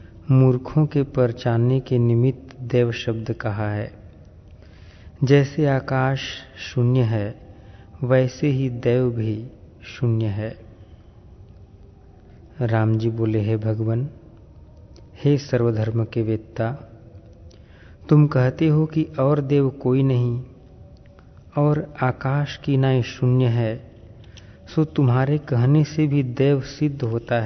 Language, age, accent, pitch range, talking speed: Hindi, 40-59, native, 105-135 Hz, 110 wpm